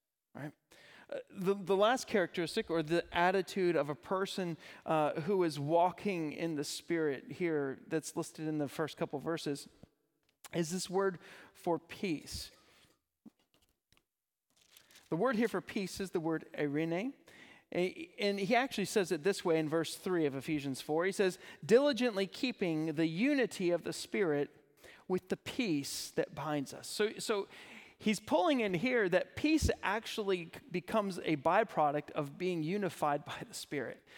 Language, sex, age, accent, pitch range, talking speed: English, male, 40-59, American, 155-205 Hz, 155 wpm